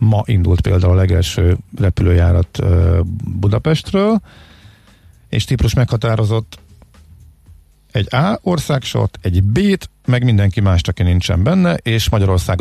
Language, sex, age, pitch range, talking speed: Hungarian, male, 50-69, 90-115 Hz, 110 wpm